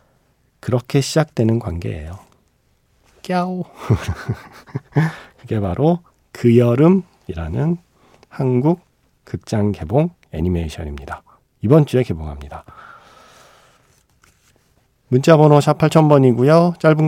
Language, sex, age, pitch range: Korean, male, 40-59, 100-145 Hz